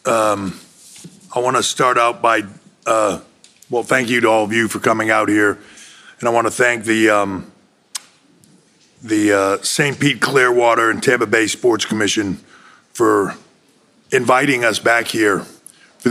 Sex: male